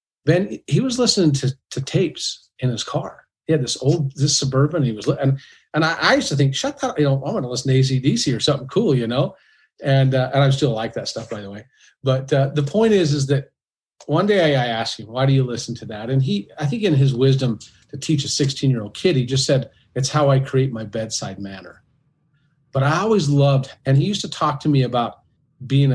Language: English